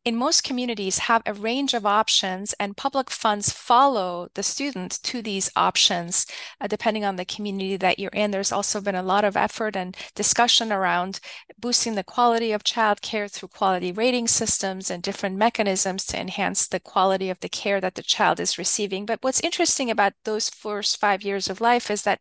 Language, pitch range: English, 190-230 Hz